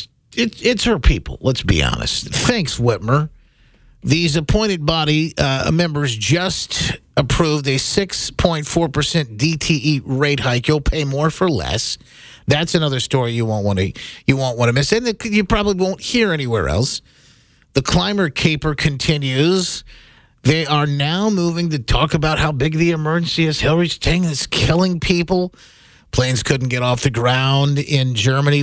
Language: English